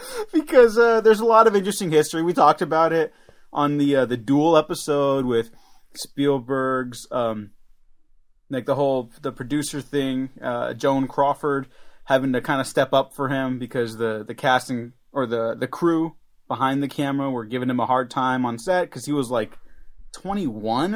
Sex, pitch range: male, 125-180 Hz